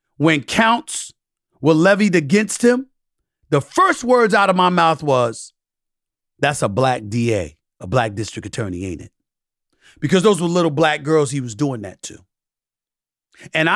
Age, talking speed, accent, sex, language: 40-59, 155 wpm, American, male, English